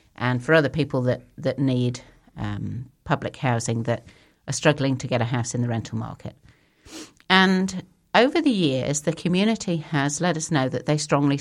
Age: 50-69